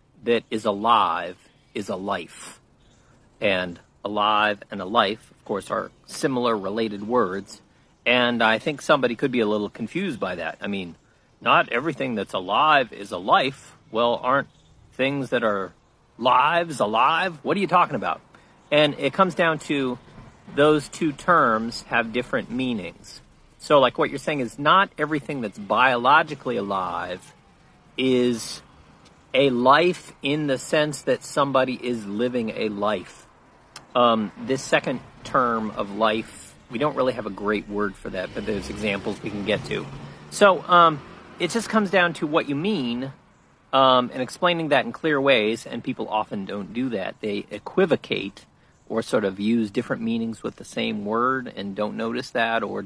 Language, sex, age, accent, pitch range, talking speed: English, male, 40-59, American, 110-150 Hz, 165 wpm